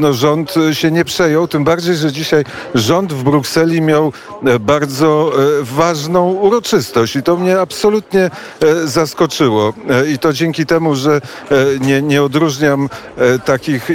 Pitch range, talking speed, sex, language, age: 130-165 Hz, 125 wpm, male, Polish, 50-69